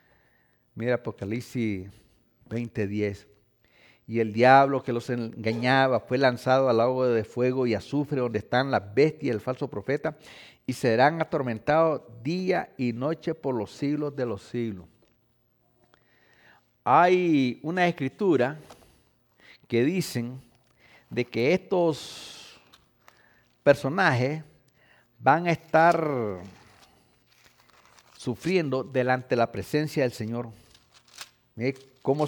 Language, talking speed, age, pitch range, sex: English, 105 wpm, 50-69, 115-145 Hz, male